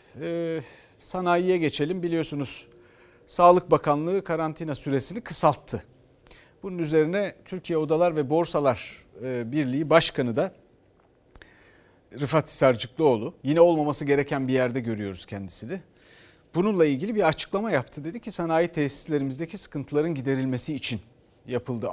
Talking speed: 105 wpm